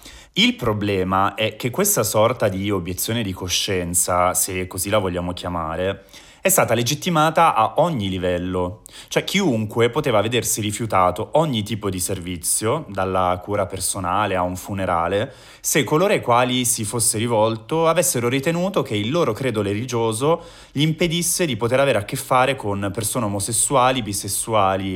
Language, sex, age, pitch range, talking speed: Italian, male, 30-49, 95-120 Hz, 150 wpm